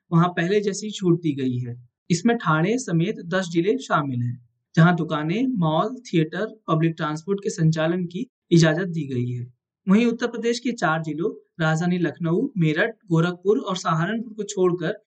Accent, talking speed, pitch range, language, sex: native, 160 wpm, 160-205 Hz, Hindi, male